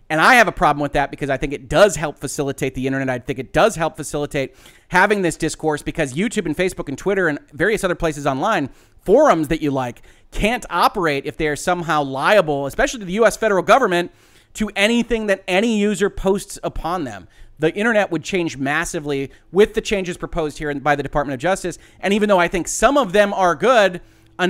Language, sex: English, male